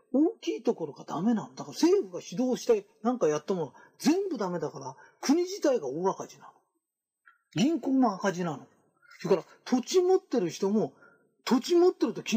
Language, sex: Japanese, male